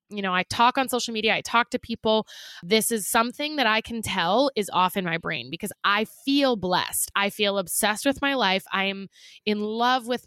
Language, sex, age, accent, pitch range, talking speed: English, female, 20-39, American, 195-255 Hz, 215 wpm